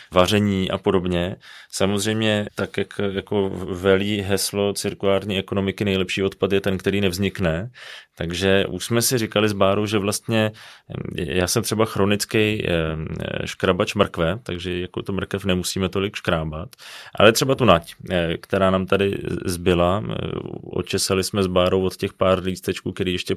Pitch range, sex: 90-110 Hz, male